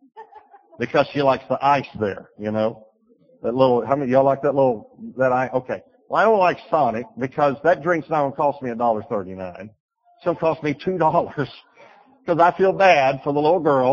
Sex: male